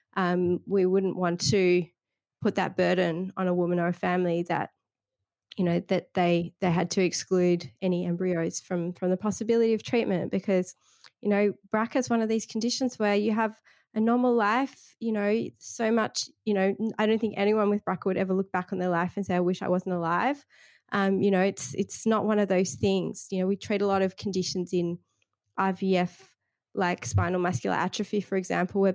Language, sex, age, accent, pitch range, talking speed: English, female, 20-39, Australian, 180-210 Hz, 205 wpm